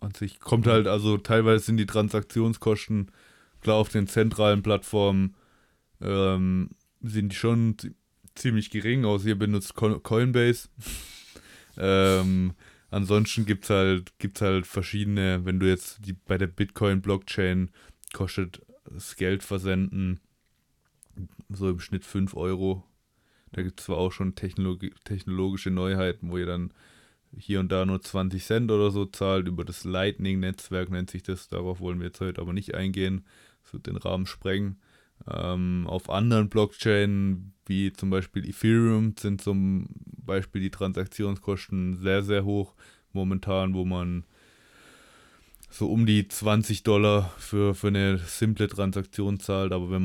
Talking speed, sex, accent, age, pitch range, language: 145 wpm, male, German, 20-39, 95-105 Hz, German